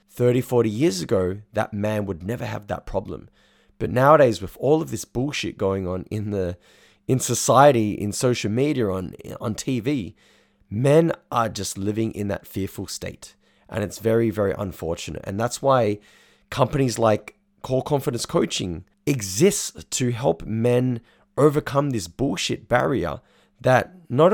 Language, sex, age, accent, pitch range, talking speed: English, male, 20-39, Australian, 100-130 Hz, 150 wpm